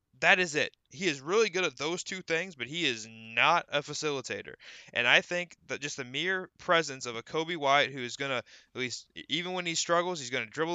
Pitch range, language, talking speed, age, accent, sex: 125-155 Hz, English, 240 wpm, 20-39, American, male